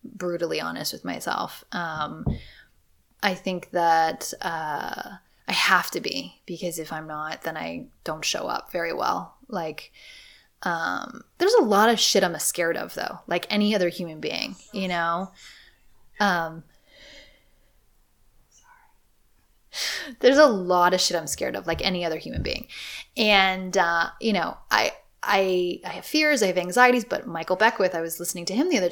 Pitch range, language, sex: 165-225 Hz, English, female